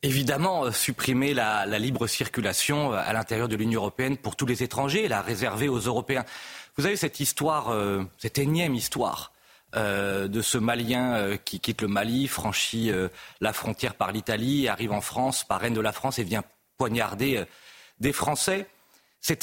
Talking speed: 180 wpm